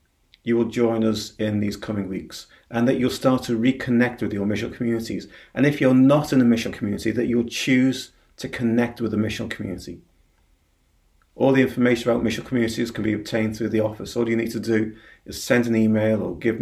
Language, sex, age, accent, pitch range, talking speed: English, male, 40-59, British, 100-125 Hz, 210 wpm